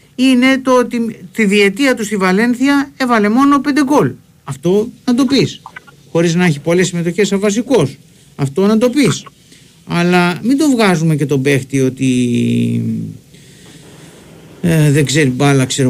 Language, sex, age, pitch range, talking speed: Greek, male, 50-69, 155-230 Hz, 145 wpm